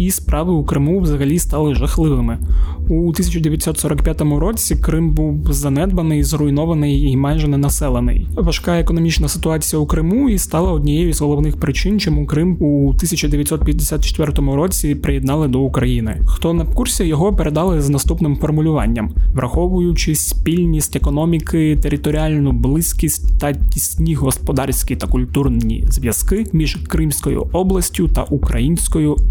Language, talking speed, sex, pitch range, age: Ukrainian, 125 wpm, male, 145-175 Hz, 20-39